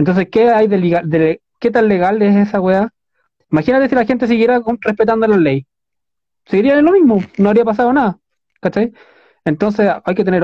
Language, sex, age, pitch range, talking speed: Spanish, male, 20-39, 165-220 Hz, 185 wpm